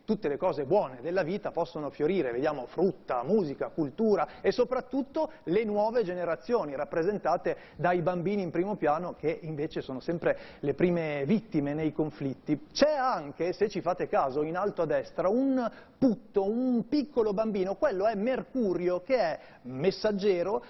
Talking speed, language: 155 wpm, Italian